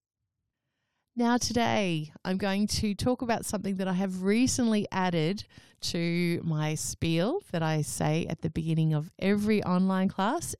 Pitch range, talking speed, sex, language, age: 155-205 Hz, 145 wpm, female, English, 30-49